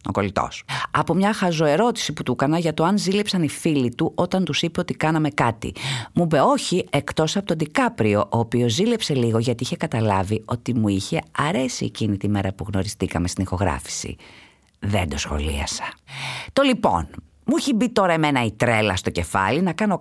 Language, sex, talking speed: Greek, female, 180 wpm